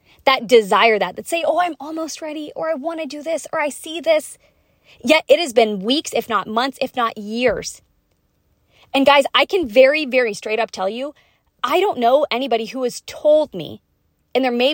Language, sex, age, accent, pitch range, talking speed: English, female, 20-39, American, 225-285 Hz, 210 wpm